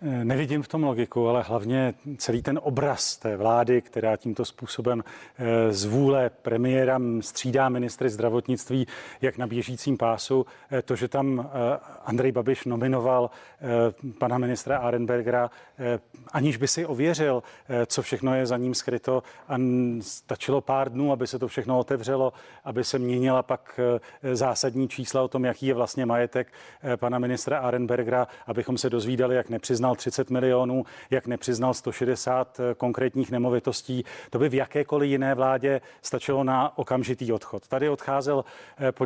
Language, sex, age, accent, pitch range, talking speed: Czech, male, 40-59, native, 120-135 Hz, 140 wpm